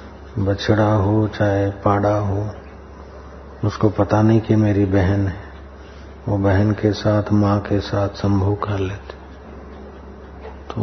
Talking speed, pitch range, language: 125 wpm, 75-110 Hz, Hindi